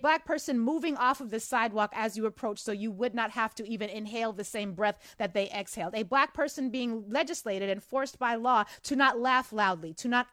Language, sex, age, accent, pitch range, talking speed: English, female, 30-49, American, 215-275 Hz, 225 wpm